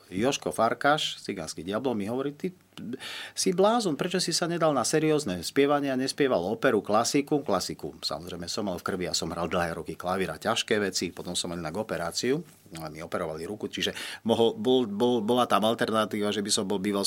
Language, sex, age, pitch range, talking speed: Slovak, male, 40-59, 95-135 Hz, 195 wpm